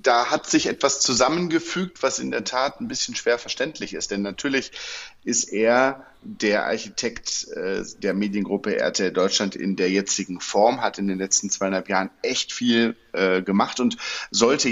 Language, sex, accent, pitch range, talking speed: German, male, German, 95-130 Hz, 160 wpm